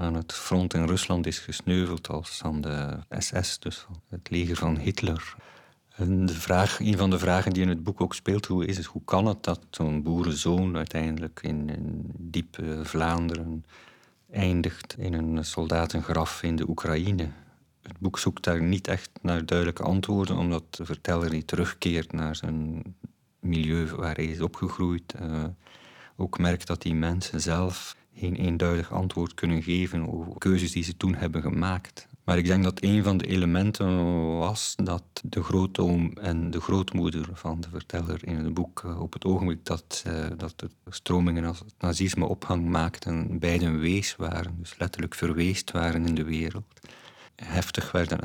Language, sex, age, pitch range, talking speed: Dutch, male, 50-69, 80-90 Hz, 165 wpm